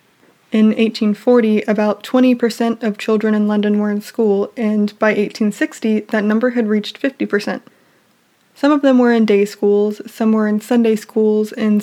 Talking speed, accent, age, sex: 155 wpm, American, 20-39, female